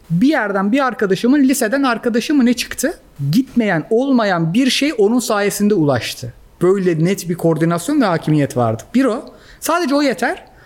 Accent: native